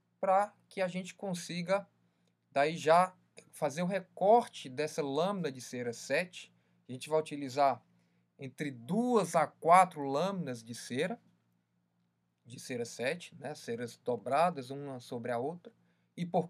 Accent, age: Brazilian, 20-39